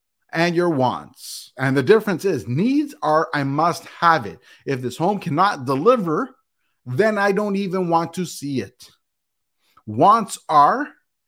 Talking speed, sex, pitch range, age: 150 wpm, male, 125-175 Hz, 30-49